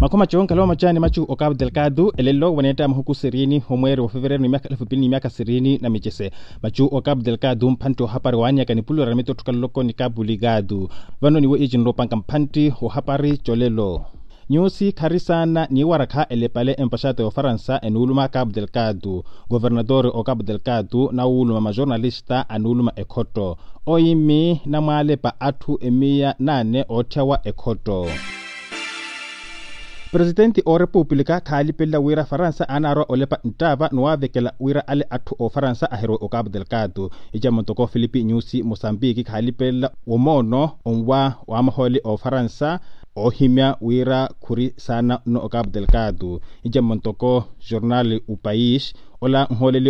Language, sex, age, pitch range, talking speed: English, male, 30-49, 115-140 Hz, 130 wpm